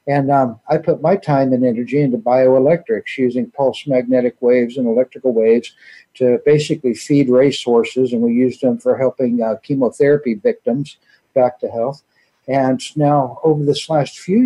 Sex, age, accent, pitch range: male, 60-79, American, 125-150 Hz